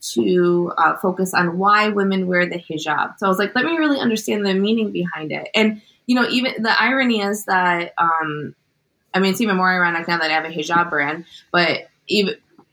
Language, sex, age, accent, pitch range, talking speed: English, female, 20-39, American, 170-210 Hz, 210 wpm